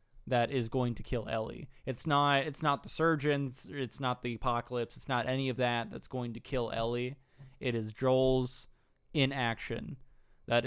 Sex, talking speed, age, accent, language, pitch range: male, 175 wpm, 20-39, American, English, 115-135 Hz